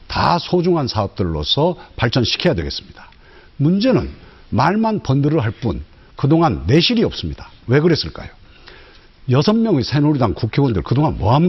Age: 60-79